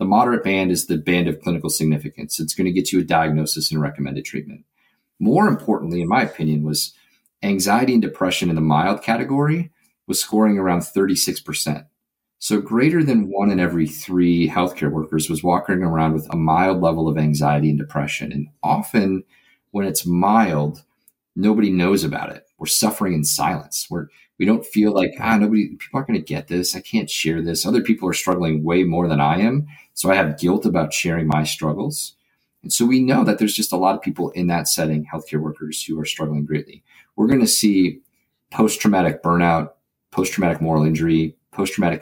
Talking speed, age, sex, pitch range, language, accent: 190 wpm, 40-59, male, 75-95 Hz, English, American